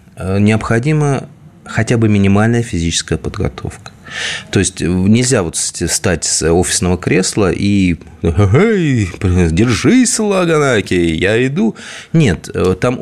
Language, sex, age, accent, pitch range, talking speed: Russian, male, 30-49, native, 95-140 Hz, 95 wpm